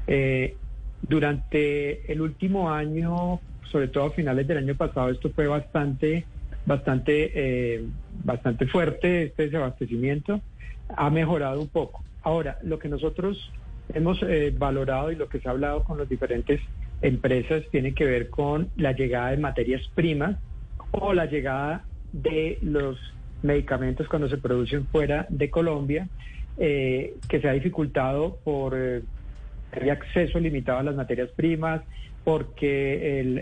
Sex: male